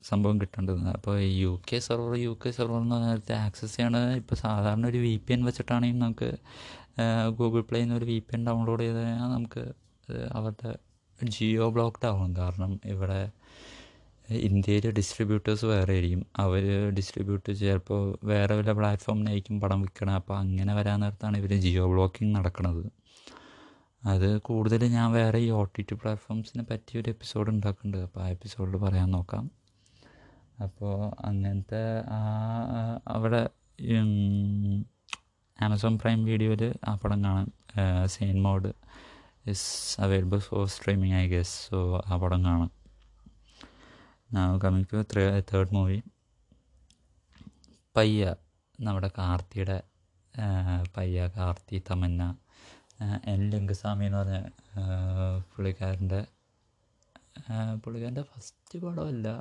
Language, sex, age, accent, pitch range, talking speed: Malayalam, male, 20-39, native, 95-115 Hz, 115 wpm